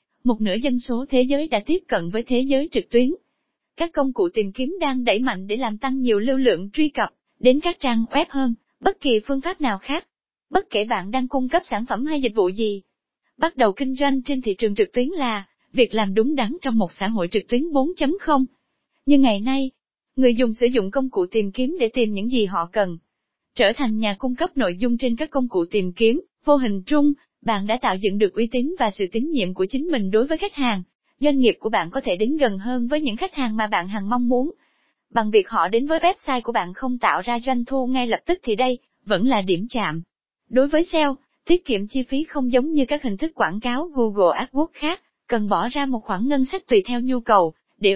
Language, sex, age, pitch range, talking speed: Vietnamese, female, 20-39, 220-285 Hz, 245 wpm